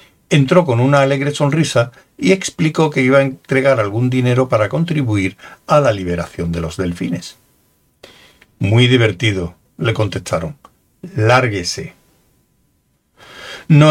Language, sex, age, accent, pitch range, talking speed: Spanish, male, 60-79, Spanish, 110-140 Hz, 115 wpm